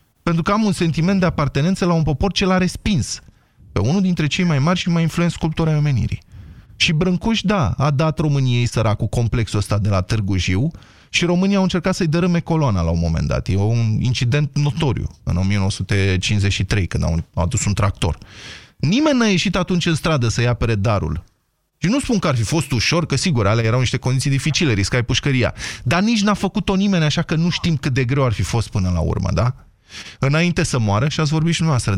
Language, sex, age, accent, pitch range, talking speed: Romanian, male, 20-39, native, 105-165 Hz, 210 wpm